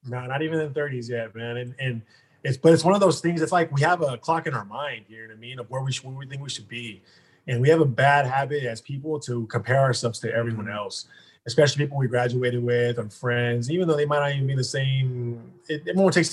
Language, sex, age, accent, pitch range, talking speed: English, male, 20-39, American, 115-140 Hz, 270 wpm